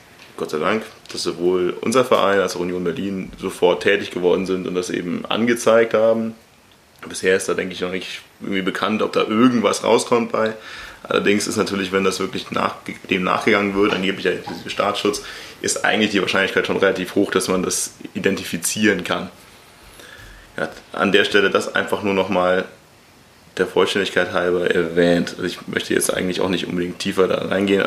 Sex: male